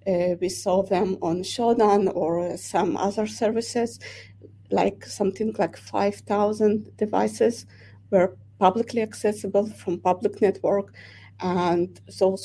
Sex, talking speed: female, 115 wpm